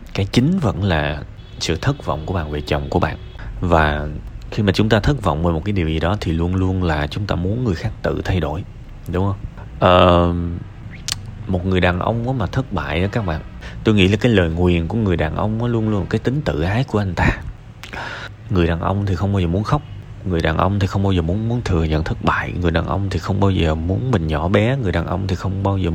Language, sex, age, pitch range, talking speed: Vietnamese, male, 20-39, 90-115 Hz, 255 wpm